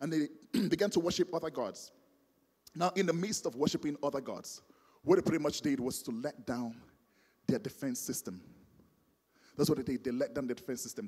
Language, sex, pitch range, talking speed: English, male, 140-190 Hz, 200 wpm